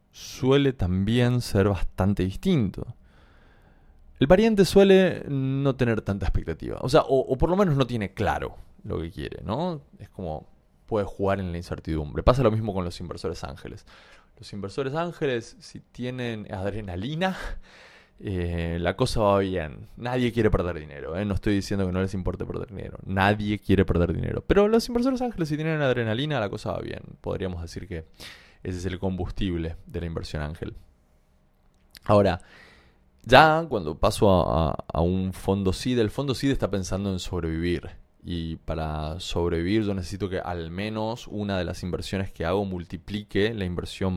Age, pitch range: 20-39, 85-110 Hz